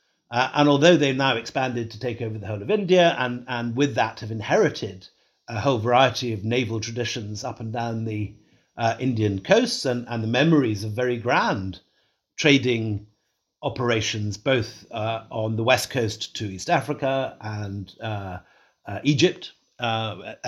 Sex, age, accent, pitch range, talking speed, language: male, 50-69, British, 115-140 Hz, 160 wpm, English